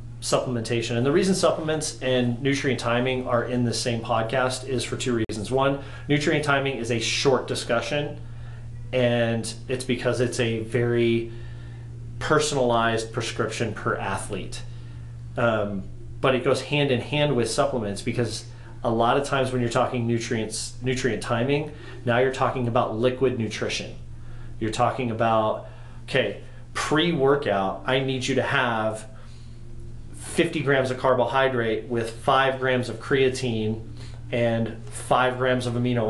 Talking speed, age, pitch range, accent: 140 wpm, 30-49, 115-130 Hz, American